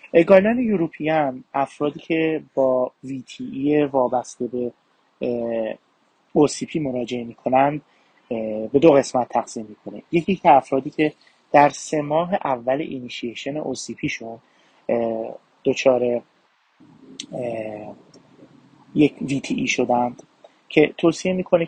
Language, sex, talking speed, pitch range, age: Persian, male, 90 wpm, 120-145 Hz, 30-49